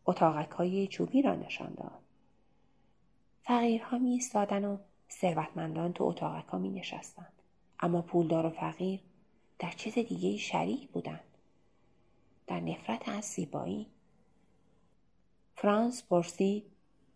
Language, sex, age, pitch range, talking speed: Persian, female, 30-49, 170-220 Hz, 110 wpm